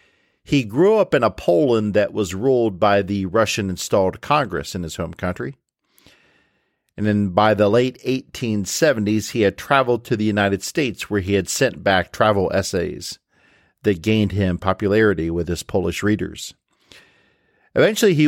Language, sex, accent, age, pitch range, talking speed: English, male, American, 50-69, 95-110 Hz, 155 wpm